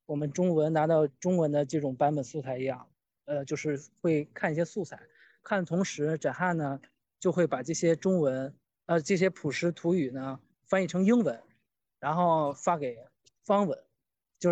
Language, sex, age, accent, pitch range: Chinese, male, 20-39, native, 145-180 Hz